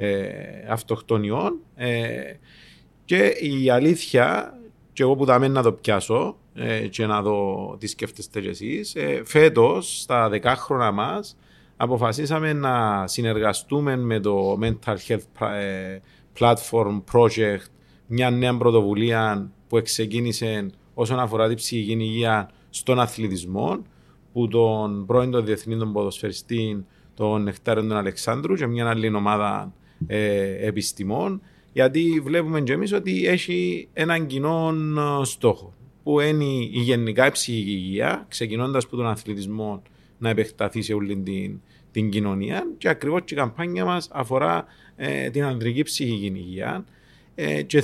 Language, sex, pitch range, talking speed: Greek, male, 105-140 Hz, 130 wpm